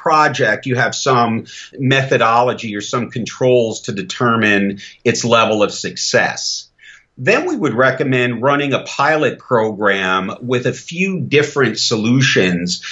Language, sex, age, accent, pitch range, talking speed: English, male, 50-69, American, 110-135 Hz, 125 wpm